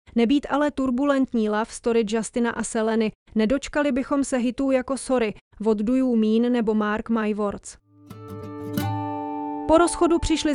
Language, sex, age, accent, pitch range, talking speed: English, female, 30-49, Czech, 220-260 Hz, 135 wpm